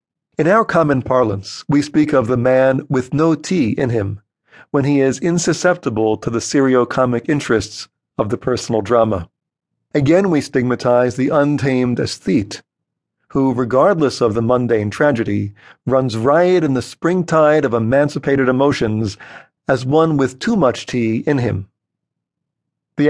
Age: 50-69